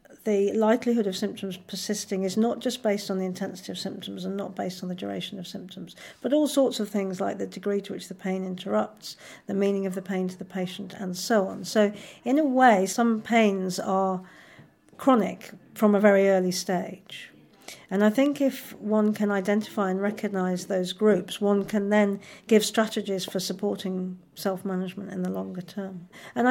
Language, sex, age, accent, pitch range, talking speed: English, female, 50-69, British, 190-220 Hz, 190 wpm